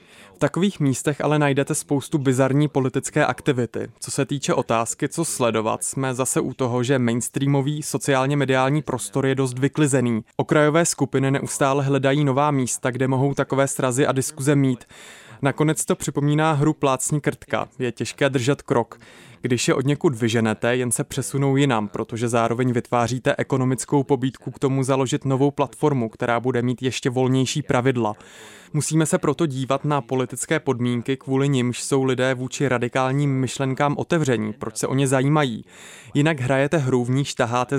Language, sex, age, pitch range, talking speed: Czech, male, 20-39, 125-145 Hz, 160 wpm